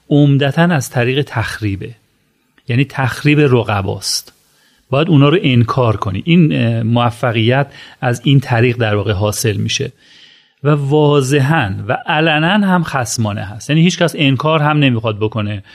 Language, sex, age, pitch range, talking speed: Persian, male, 40-59, 115-145 Hz, 135 wpm